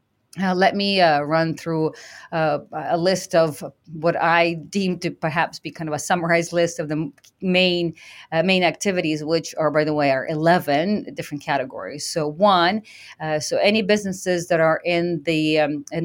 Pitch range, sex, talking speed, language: 160-195 Hz, female, 180 wpm, English